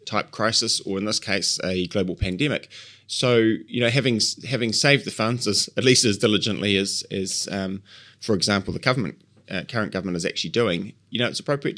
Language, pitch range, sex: English, 90-115 Hz, male